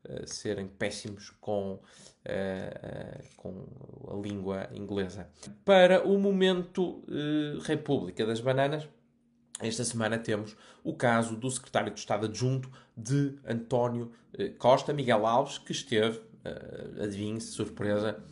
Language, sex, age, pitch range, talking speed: Portuguese, male, 20-39, 110-145 Hz, 110 wpm